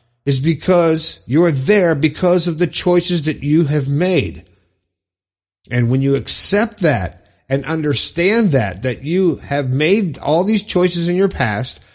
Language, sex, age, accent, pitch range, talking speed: English, male, 50-69, American, 130-175 Hz, 150 wpm